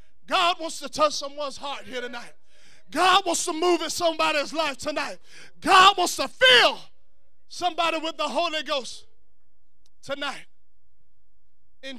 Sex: male